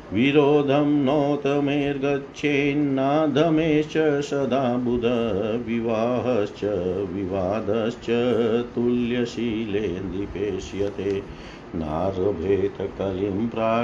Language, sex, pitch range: Hindi, male, 105-135 Hz